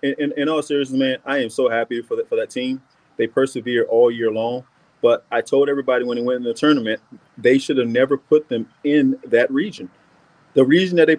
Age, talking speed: 30-49, 225 wpm